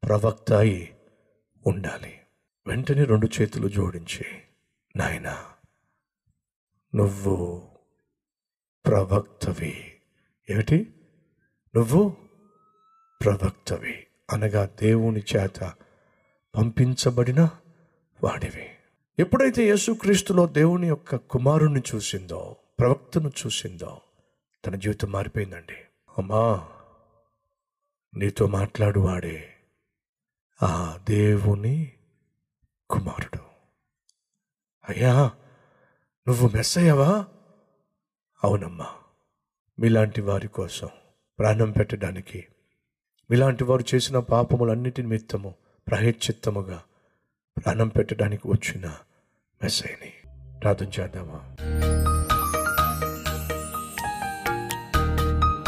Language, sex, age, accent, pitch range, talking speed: Telugu, male, 50-69, native, 95-135 Hz, 60 wpm